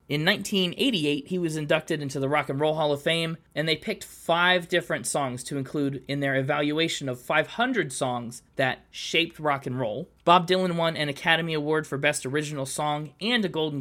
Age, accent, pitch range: 20-39, American, 140-175 Hz